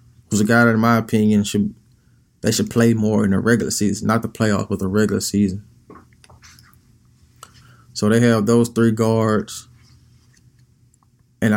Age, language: 20-39, English